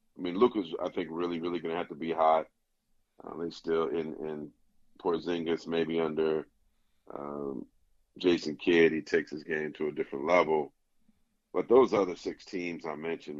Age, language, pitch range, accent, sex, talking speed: 40-59, English, 80-95 Hz, American, male, 175 wpm